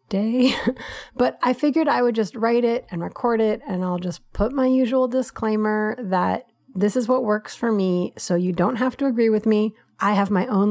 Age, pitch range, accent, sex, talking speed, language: 30-49, 185-235 Hz, American, female, 215 wpm, English